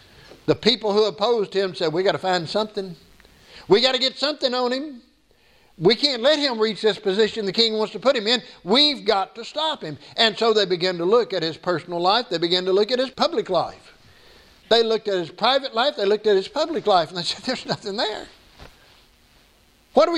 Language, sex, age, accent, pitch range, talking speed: English, male, 60-79, American, 190-250 Hz, 225 wpm